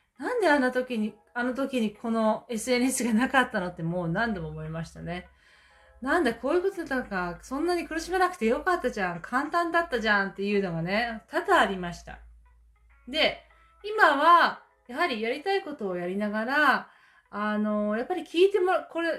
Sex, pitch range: female, 200-295 Hz